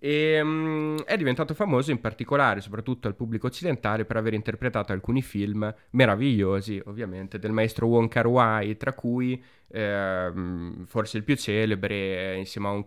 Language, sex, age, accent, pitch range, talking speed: Italian, male, 20-39, native, 105-140 Hz, 155 wpm